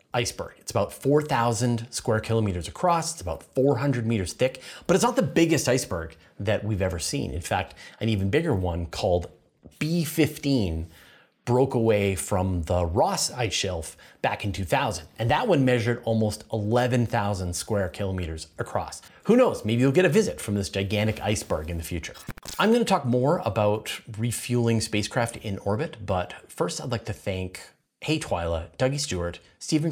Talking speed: 170 wpm